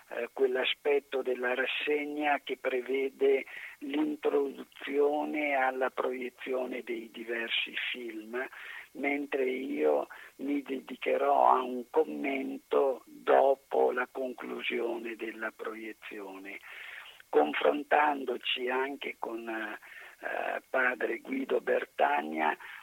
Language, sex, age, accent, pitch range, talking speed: Italian, male, 50-69, native, 110-155 Hz, 80 wpm